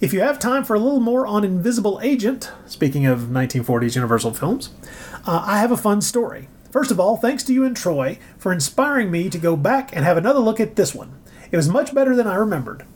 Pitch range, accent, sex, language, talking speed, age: 170-260 Hz, American, male, English, 230 wpm, 40-59